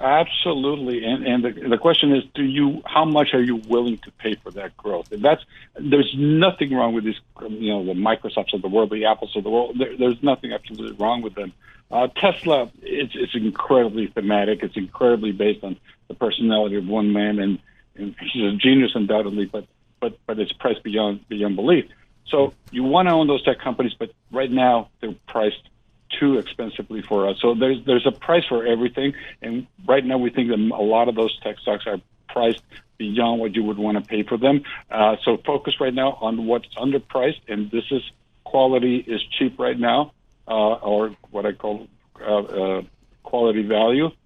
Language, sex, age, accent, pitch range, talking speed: English, male, 60-79, American, 105-130 Hz, 200 wpm